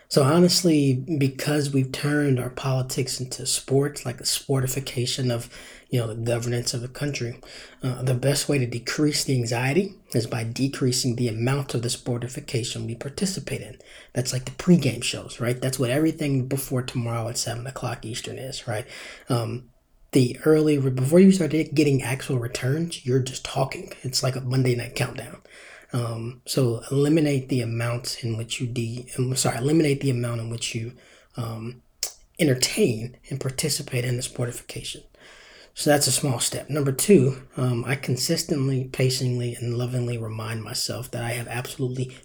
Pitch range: 120-140 Hz